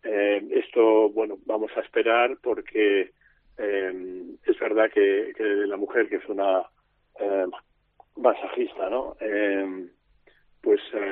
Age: 40-59